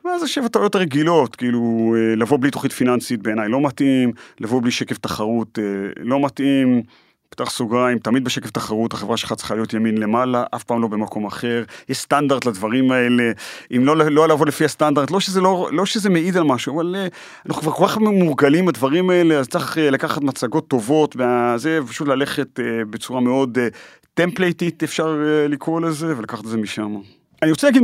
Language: Hebrew